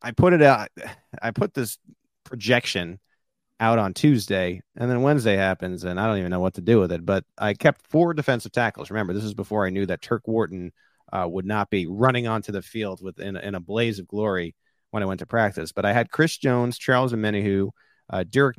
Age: 30-49